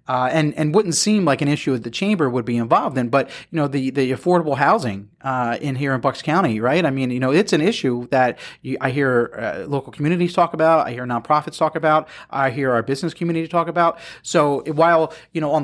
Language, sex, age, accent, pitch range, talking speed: English, male, 30-49, American, 125-155 Hz, 240 wpm